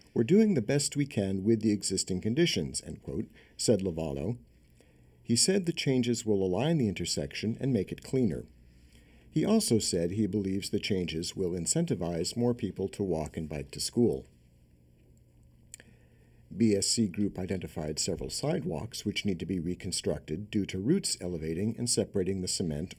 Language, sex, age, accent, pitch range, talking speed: English, male, 60-79, American, 75-110 Hz, 160 wpm